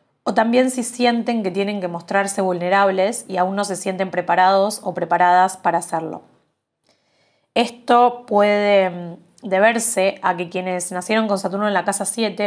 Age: 20-39